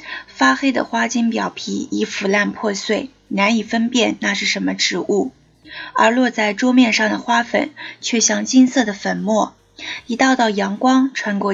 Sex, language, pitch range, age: female, Chinese, 205-255 Hz, 20-39